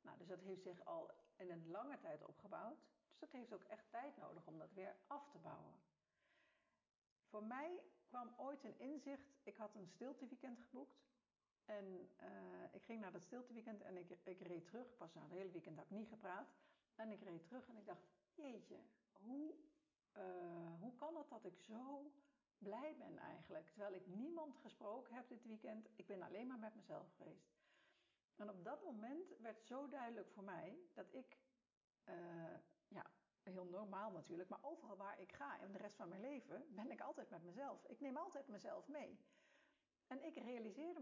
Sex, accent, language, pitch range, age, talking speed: female, Dutch, Dutch, 190-295 Hz, 60-79, 190 wpm